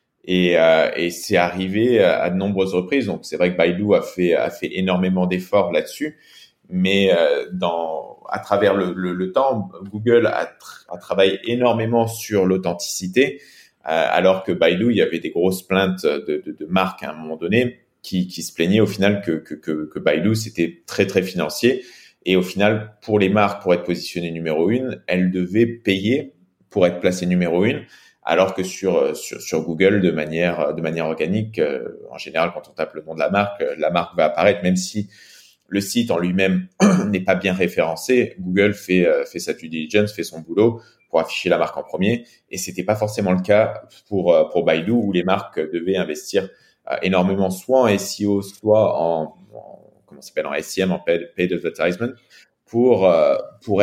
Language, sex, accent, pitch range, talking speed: French, male, French, 85-105 Hz, 195 wpm